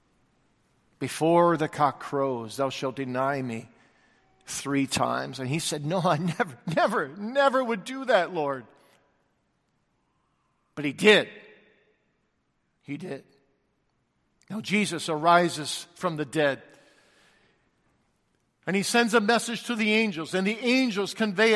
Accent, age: American, 50-69